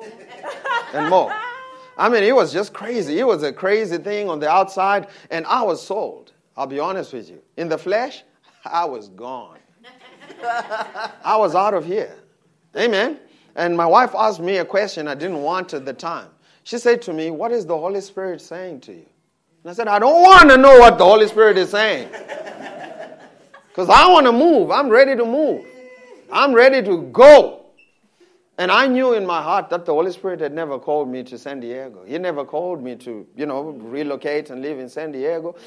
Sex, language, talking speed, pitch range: male, English, 200 wpm, 160-240 Hz